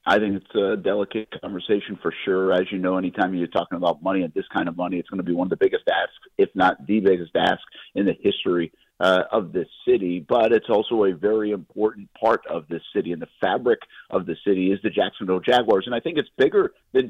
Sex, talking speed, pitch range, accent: male, 240 wpm, 95-115 Hz, American